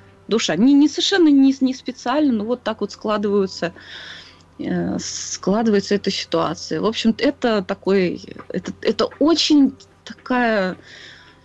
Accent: native